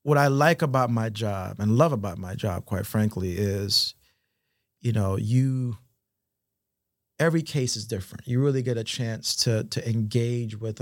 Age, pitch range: 40-59, 105-120 Hz